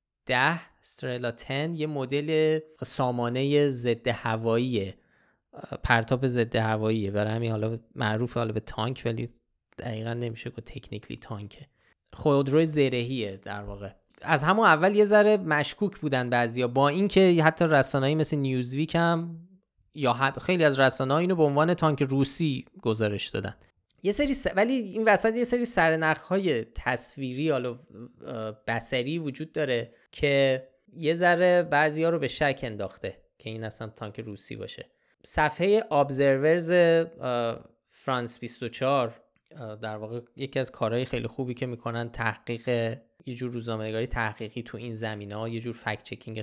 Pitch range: 115-155 Hz